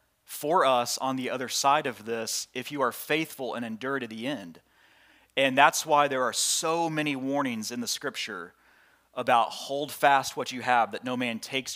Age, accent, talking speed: 30-49, American, 195 wpm